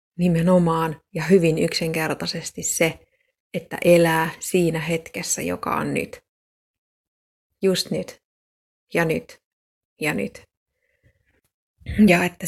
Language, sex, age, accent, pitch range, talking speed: Finnish, female, 20-39, native, 165-190 Hz, 95 wpm